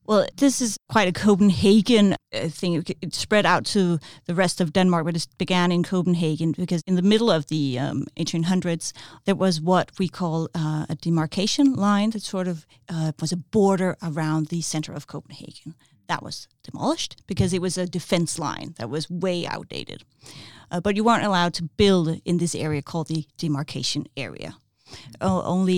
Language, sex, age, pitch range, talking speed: English, female, 40-59, 155-185 Hz, 185 wpm